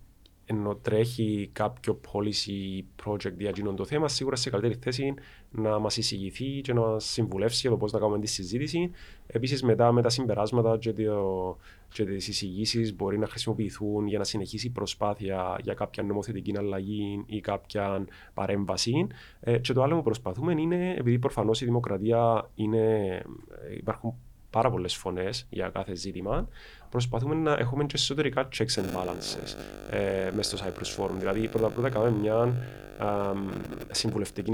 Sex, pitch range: male, 100-125 Hz